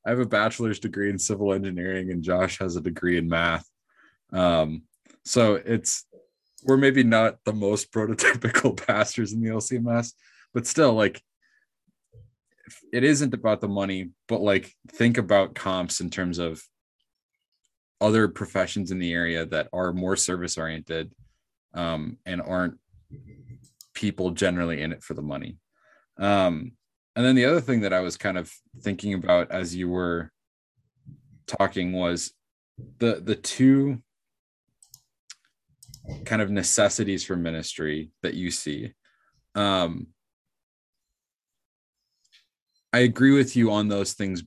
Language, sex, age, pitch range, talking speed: English, male, 20-39, 90-120 Hz, 135 wpm